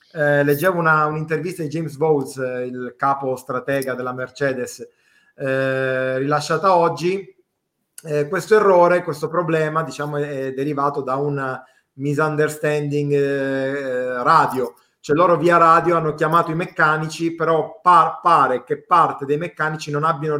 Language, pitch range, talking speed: Italian, 135-165 Hz, 130 wpm